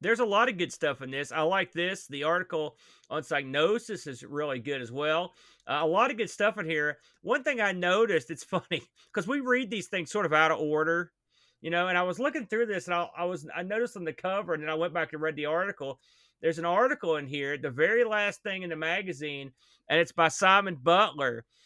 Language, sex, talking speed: English, male, 240 wpm